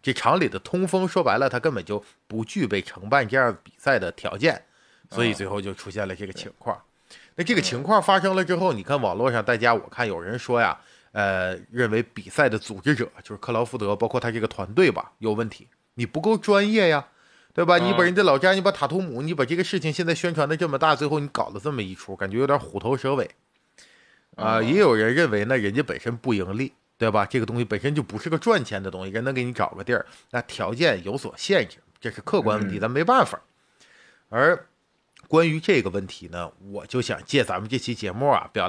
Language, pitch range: Chinese, 105-165 Hz